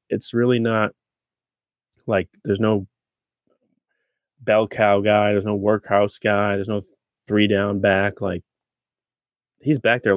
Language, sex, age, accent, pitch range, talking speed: English, male, 20-39, American, 100-120 Hz, 130 wpm